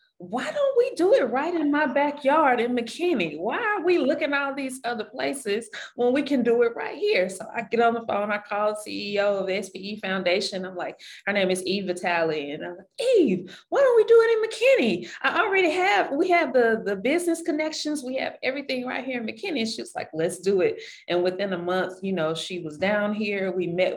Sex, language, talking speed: female, English, 235 wpm